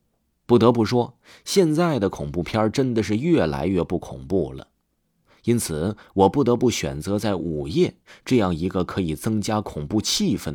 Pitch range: 85-120 Hz